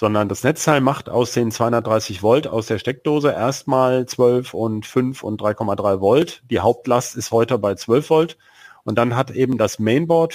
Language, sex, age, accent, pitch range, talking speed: German, male, 40-59, German, 115-145 Hz, 180 wpm